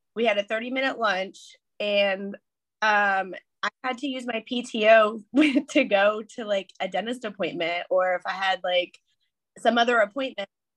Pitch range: 190-245 Hz